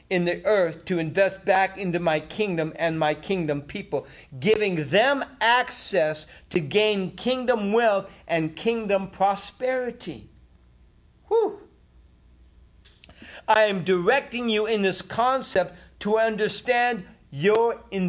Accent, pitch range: American, 175-240 Hz